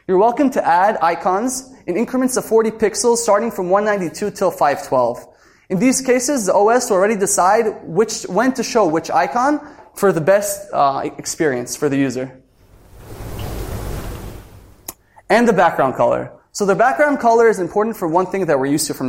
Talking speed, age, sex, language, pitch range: 175 wpm, 20-39, male, Hebrew, 150-225 Hz